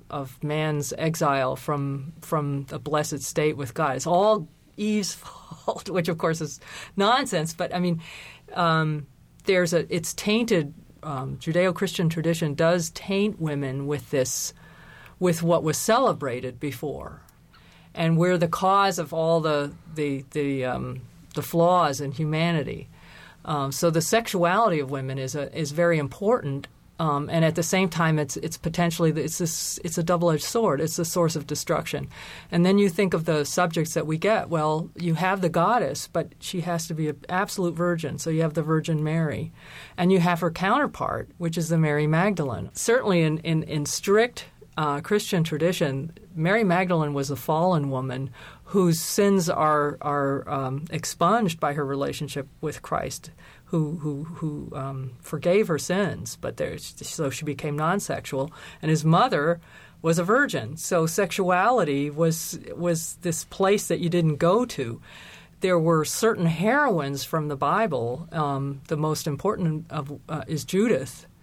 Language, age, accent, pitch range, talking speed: English, 40-59, American, 150-175 Hz, 160 wpm